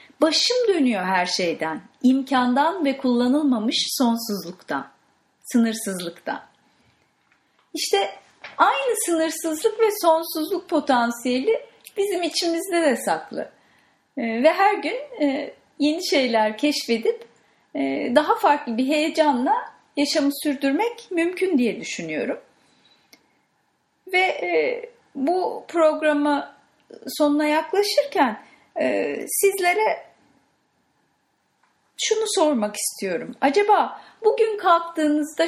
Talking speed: 80 wpm